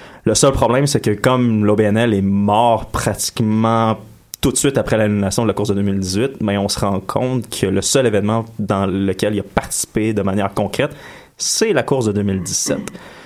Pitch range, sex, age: 100-125 Hz, male, 20-39